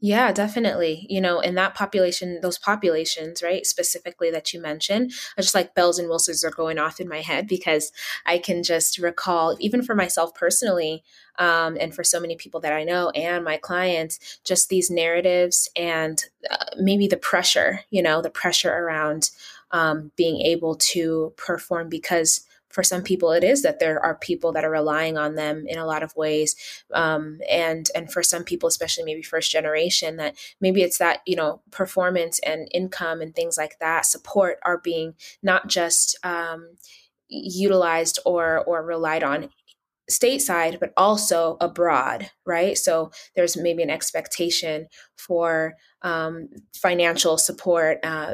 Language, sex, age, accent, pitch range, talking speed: English, female, 20-39, American, 160-185 Hz, 165 wpm